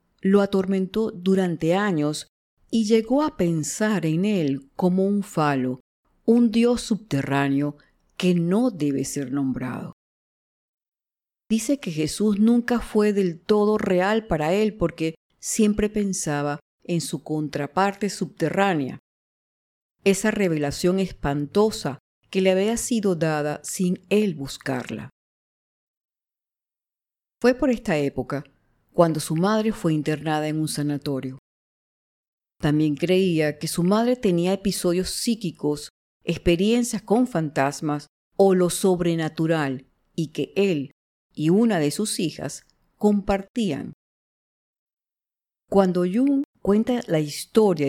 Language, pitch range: English, 150-210 Hz